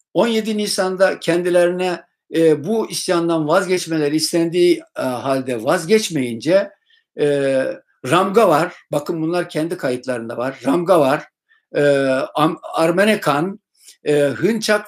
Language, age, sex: Turkish, 60-79, male